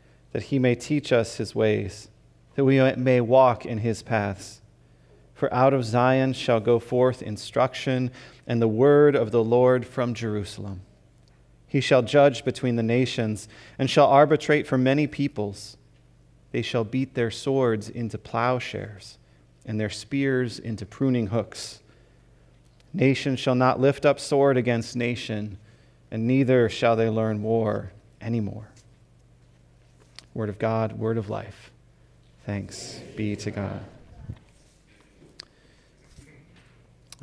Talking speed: 130 wpm